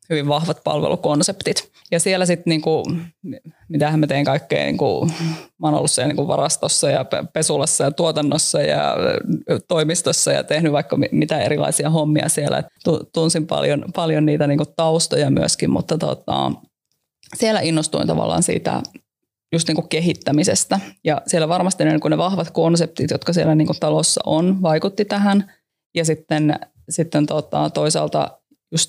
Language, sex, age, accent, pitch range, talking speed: Finnish, female, 20-39, native, 155-185 Hz, 140 wpm